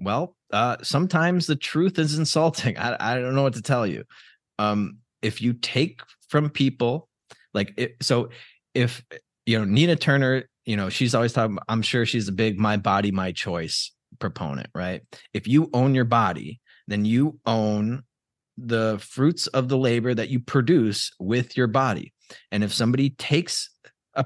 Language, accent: English, American